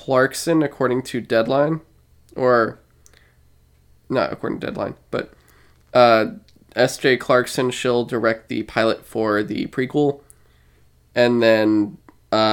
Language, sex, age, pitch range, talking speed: English, male, 20-39, 110-125 Hz, 110 wpm